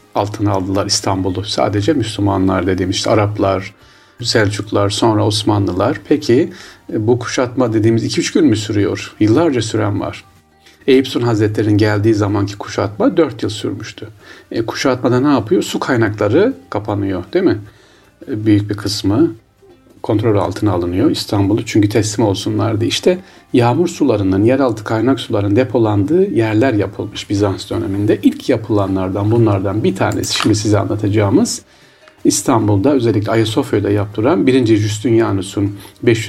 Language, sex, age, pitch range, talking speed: Turkish, male, 40-59, 100-115 Hz, 125 wpm